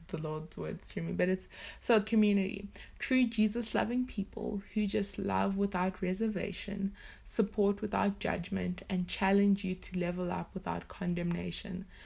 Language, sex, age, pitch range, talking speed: English, female, 20-39, 185-205 Hz, 145 wpm